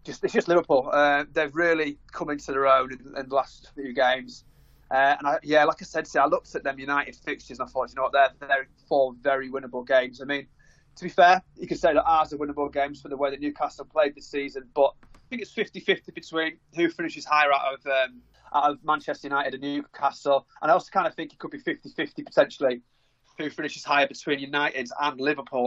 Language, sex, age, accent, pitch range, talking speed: English, male, 20-39, British, 135-160 Hz, 230 wpm